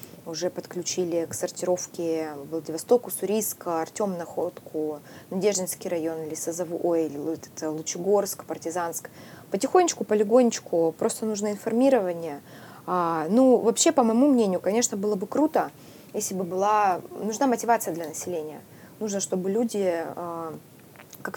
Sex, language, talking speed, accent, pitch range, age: female, Russian, 110 wpm, native, 165-215 Hz, 20-39